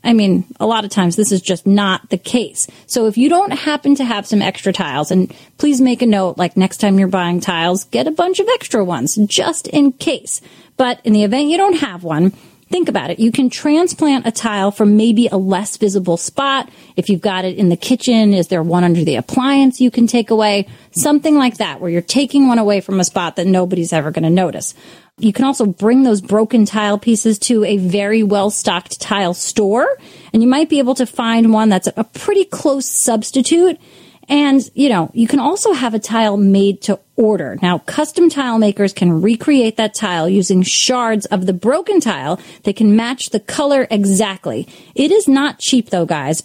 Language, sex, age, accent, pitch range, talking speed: English, female, 30-49, American, 195-260 Hz, 210 wpm